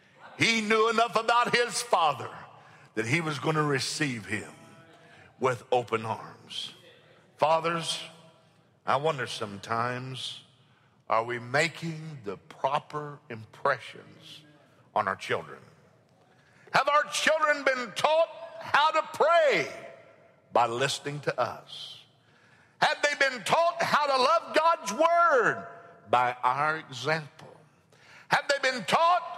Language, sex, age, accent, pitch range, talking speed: English, male, 60-79, American, 140-210 Hz, 115 wpm